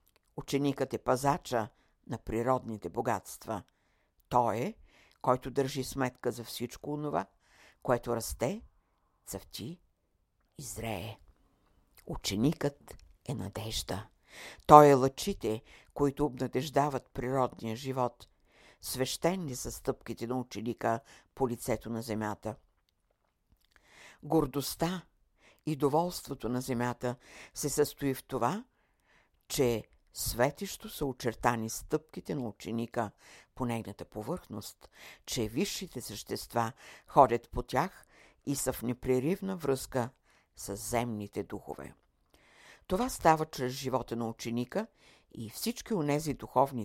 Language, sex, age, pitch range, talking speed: Bulgarian, female, 60-79, 110-140 Hz, 105 wpm